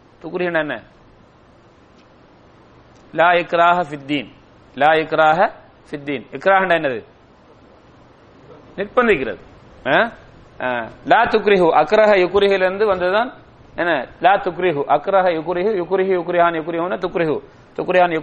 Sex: male